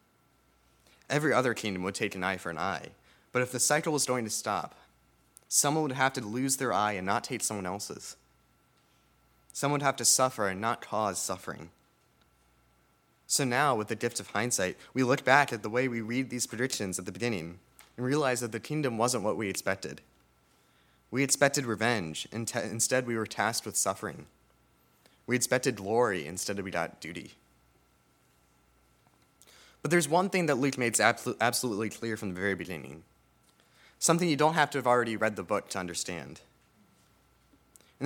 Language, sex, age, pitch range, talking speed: English, male, 30-49, 100-130 Hz, 170 wpm